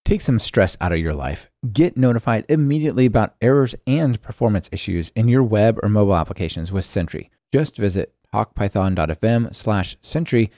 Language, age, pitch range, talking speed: English, 30-49, 95-130 Hz, 155 wpm